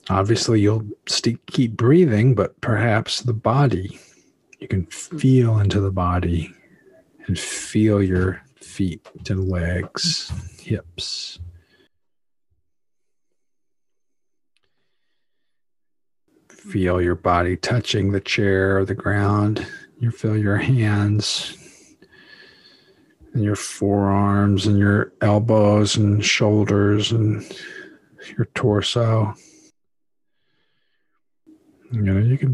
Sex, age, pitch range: male, 50-69, 100-135 Hz